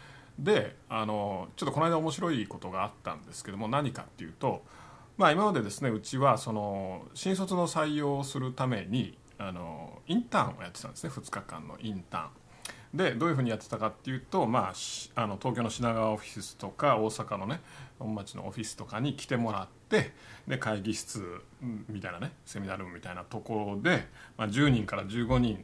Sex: male